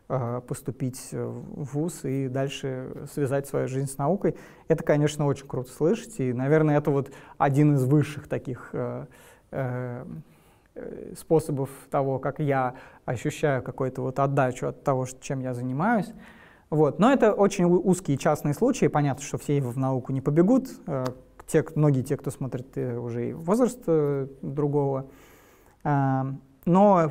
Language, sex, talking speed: Russian, male, 125 wpm